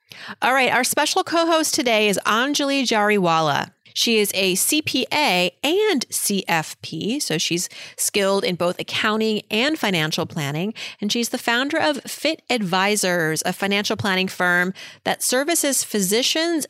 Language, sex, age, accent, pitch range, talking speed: English, female, 30-49, American, 175-230 Hz, 135 wpm